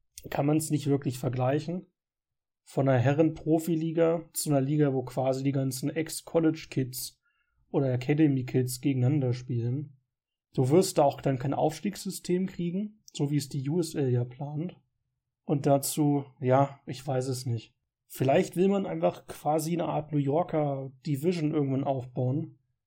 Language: German